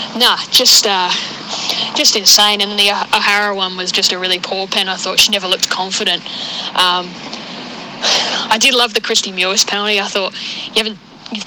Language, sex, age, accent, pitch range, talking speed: English, female, 10-29, Australian, 190-220 Hz, 180 wpm